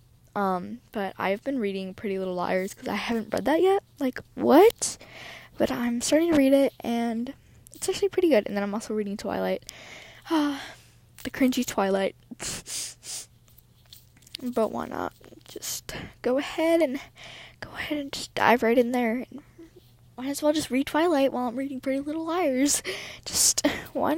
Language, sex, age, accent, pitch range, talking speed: English, female, 10-29, American, 215-290 Hz, 165 wpm